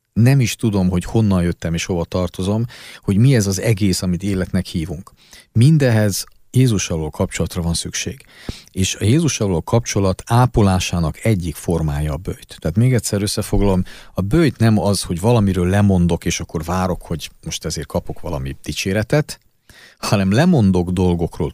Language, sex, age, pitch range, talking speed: Hungarian, male, 50-69, 85-115 Hz, 150 wpm